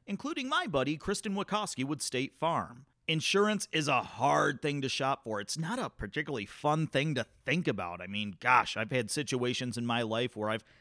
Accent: American